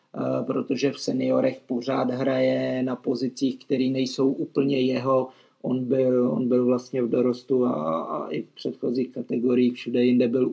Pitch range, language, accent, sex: 125-140 Hz, Czech, native, male